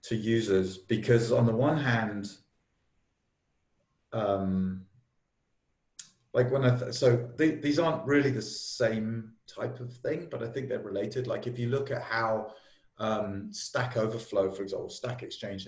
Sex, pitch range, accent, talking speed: male, 105-145 Hz, British, 145 wpm